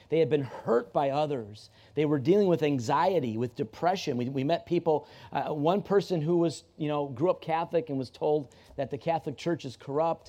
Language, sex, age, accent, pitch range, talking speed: English, male, 40-59, American, 135-170 Hz, 210 wpm